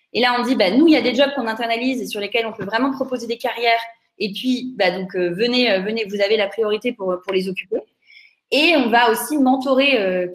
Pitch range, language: 200-260 Hz, French